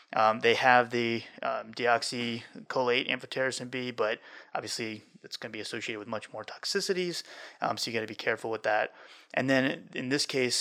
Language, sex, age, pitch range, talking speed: English, male, 20-39, 110-125 Hz, 185 wpm